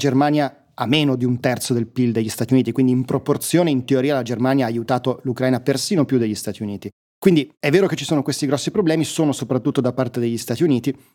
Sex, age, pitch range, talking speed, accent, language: male, 30-49, 125-145 Hz, 225 wpm, native, Italian